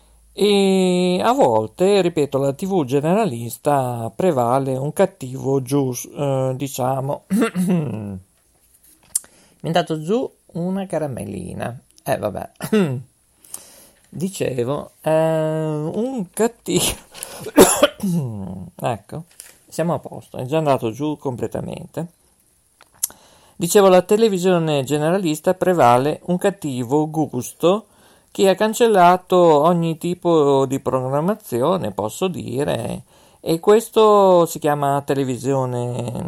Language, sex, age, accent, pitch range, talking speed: Italian, male, 50-69, native, 135-180 Hz, 95 wpm